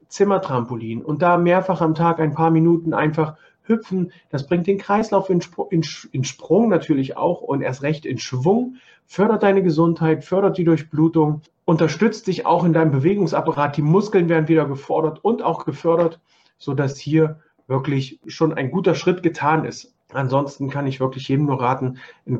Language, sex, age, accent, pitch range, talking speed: German, male, 40-59, German, 140-175 Hz, 165 wpm